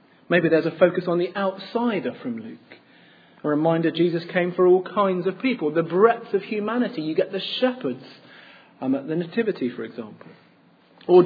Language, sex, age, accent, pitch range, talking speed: English, male, 40-59, British, 160-230 Hz, 175 wpm